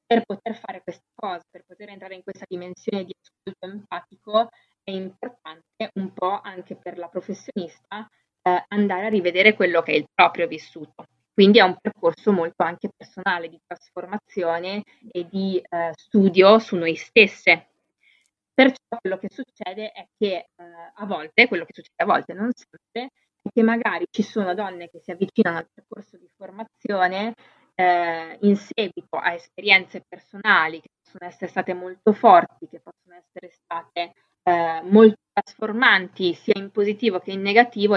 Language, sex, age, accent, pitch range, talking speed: Italian, female, 20-39, native, 175-210 Hz, 160 wpm